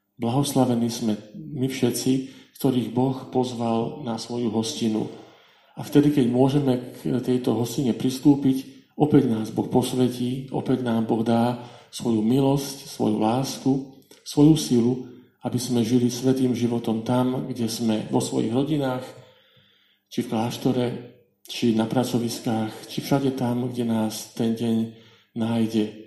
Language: Slovak